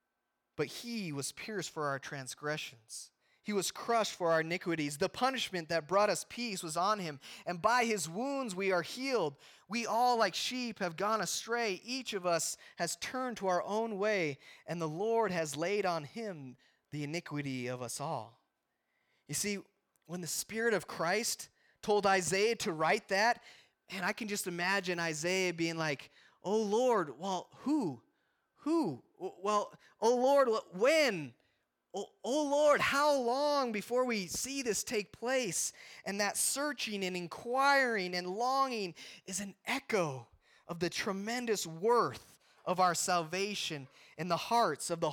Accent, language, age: American, English, 20-39